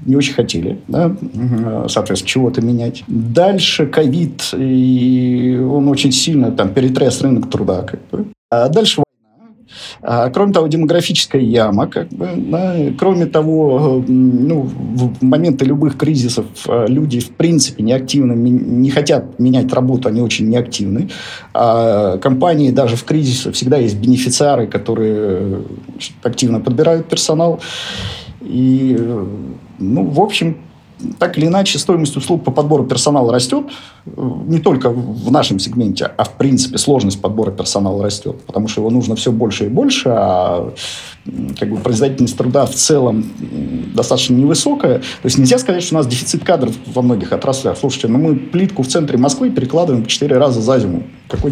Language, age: Russian, 50-69